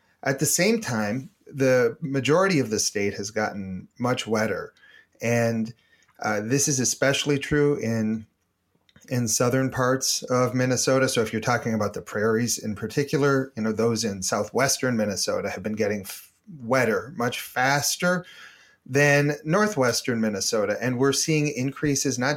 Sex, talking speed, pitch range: male, 150 wpm, 115-150 Hz